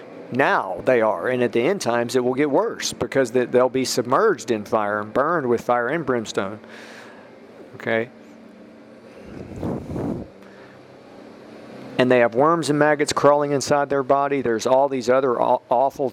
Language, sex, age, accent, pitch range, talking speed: English, male, 50-69, American, 120-140 Hz, 150 wpm